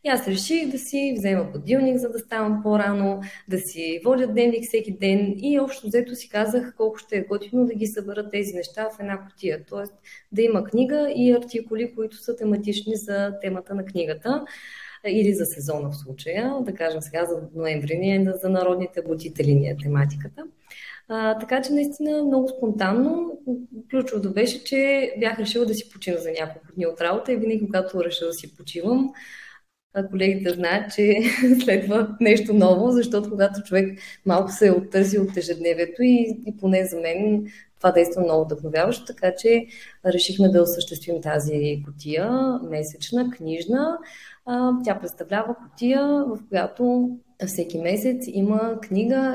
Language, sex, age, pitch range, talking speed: Bulgarian, female, 20-39, 180-240 Hz, 155 wpm